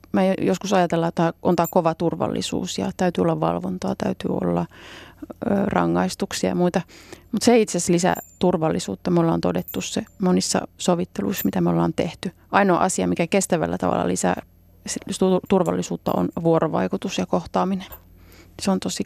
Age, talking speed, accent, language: 30-49, 150 wpm, native, Finnish